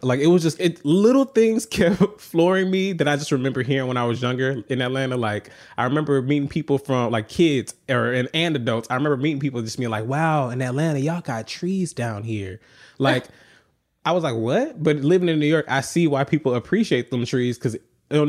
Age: 20-39